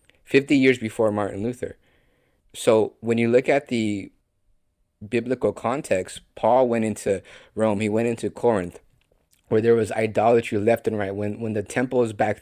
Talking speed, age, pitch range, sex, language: 160 wpm, 30-49, 105-115 Hz, male, English